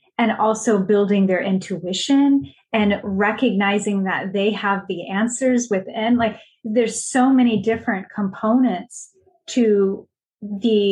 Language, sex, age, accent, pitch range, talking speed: English, female, 20-39, American, 190-225 Hz, 115 wpm